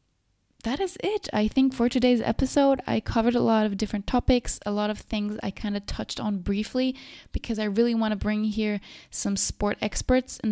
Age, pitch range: 20-39, 200-245 Hz